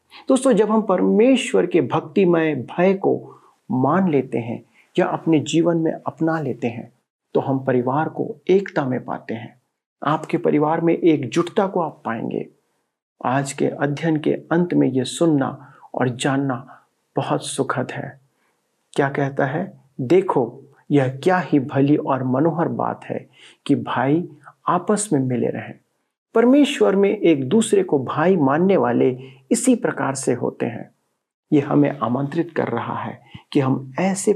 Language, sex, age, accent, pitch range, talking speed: Hindi, male, 50-69, native, 130-170 Hz, 150 wpm